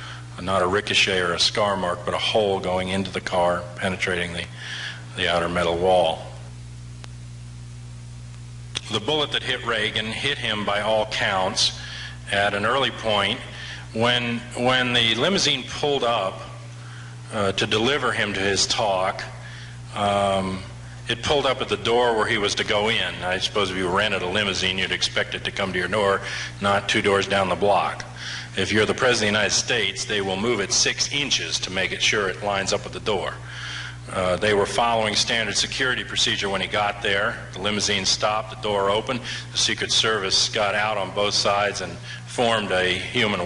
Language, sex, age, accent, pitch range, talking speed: English, male, 40-59, American, 90-115 Hz, 185 wpm